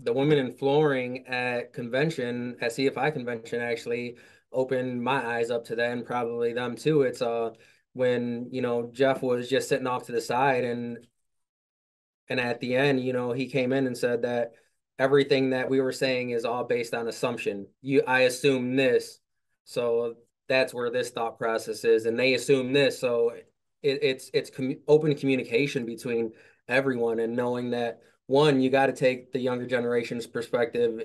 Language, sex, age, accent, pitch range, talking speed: English, male, 20-39, American, 120-140 Hz, 175 wpm